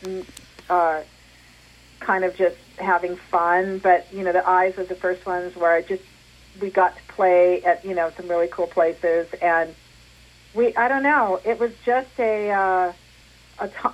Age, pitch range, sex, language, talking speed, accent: 50-69, 165-195 Hz, female, English, 175 wpm, American